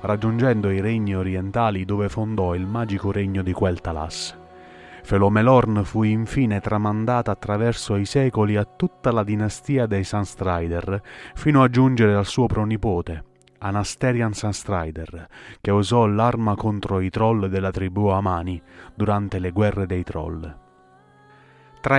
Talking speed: 130 wpm